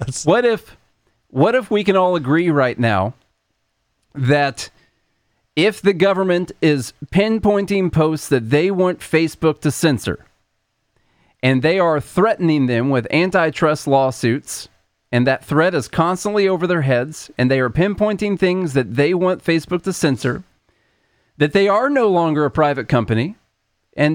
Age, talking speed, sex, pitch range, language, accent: 40-59, 145 wpm, male, 120-165 Hz, English, American